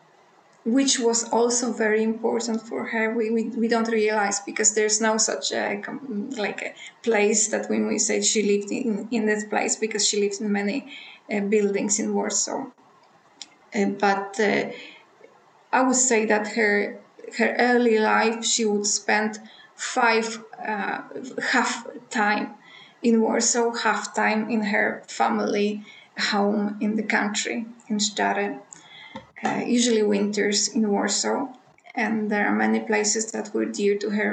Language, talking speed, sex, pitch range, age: English, 150 wpm, female, 205-235 Hz, 20-39